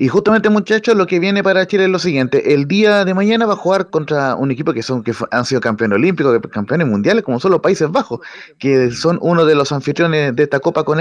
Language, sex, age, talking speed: Spanish, male, 30-49, 245 wpm